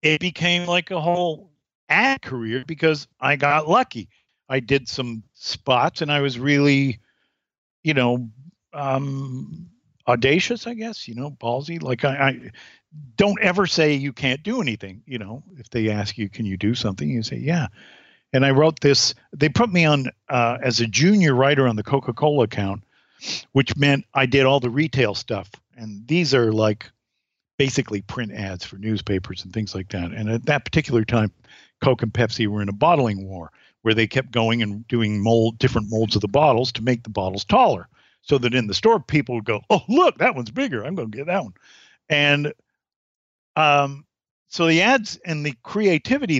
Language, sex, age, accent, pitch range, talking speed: English, male, 50-69, American, 110-150 Hz, 190 wpm